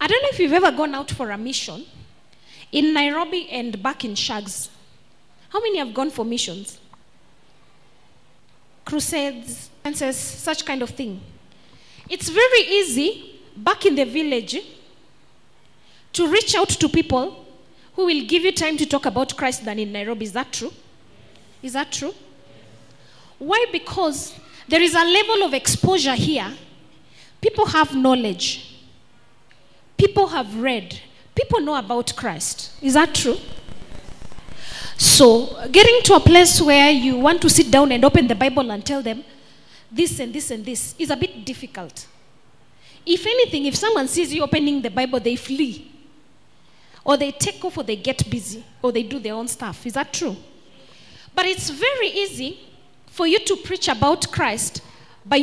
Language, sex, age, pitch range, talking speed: English, female, 20-39, 245-345 Hz, 160 wpm